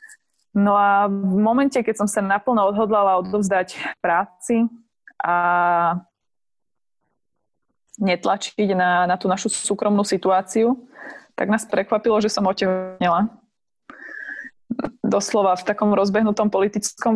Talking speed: 105 wpm